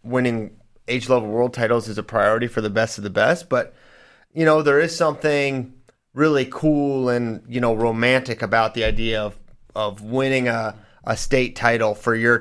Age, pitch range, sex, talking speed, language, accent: 30-49, 110-130 Hz, male, 185 wpm, English, American